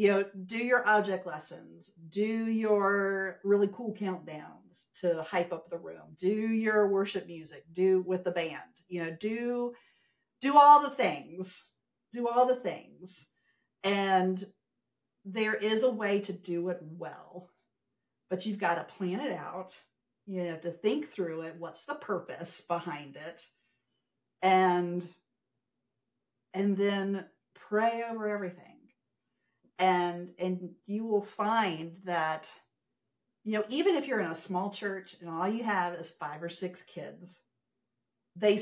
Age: 50-69